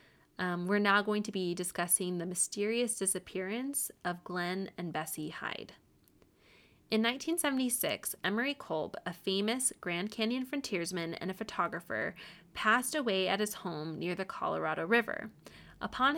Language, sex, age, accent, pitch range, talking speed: English, female, 20-39, American, 185-245 Hz, 135 wpm